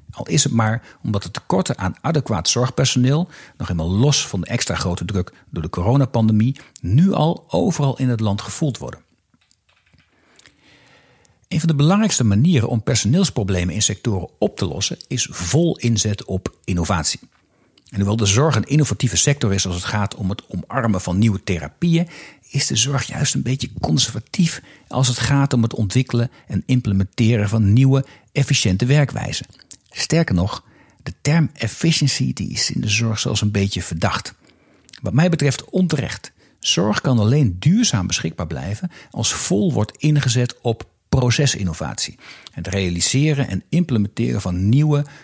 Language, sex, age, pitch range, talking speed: Dutch, male, 60-79, 100-140 Hz, 155 wpm